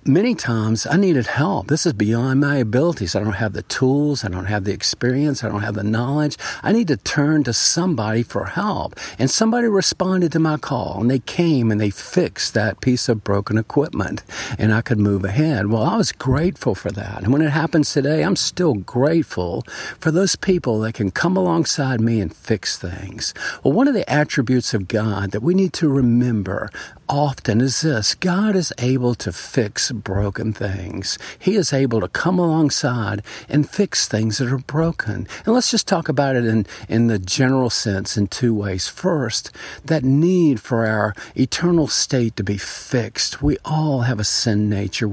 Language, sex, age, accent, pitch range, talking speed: English, male, 50-69, American, 110-155 Hz, 190 wpm